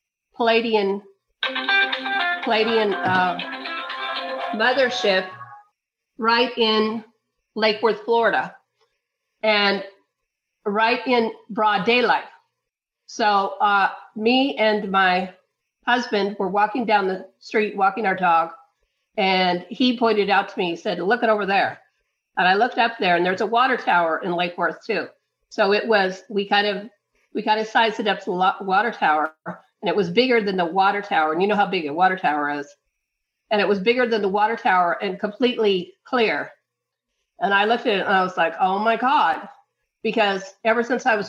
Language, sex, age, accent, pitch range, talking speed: English, female, 50-69, American, 190-230 Hz, 165 wpm